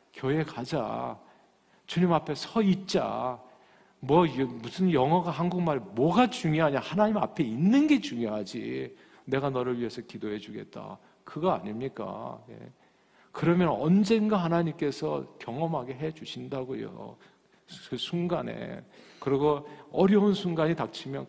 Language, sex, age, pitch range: Korean, male, 50-69, 120-155 Hz